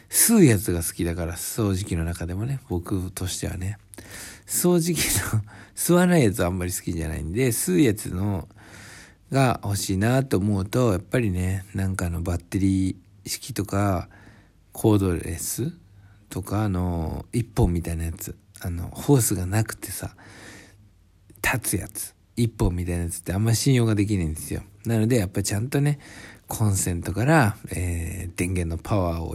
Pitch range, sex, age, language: 90-115 Hz, male, 60-79, Japanese